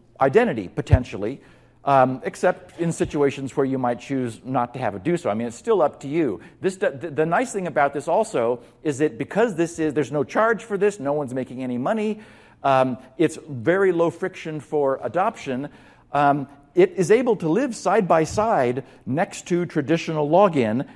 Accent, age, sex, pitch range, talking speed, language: American, 50-69, male, 135-175 Hz, 190 wpm, English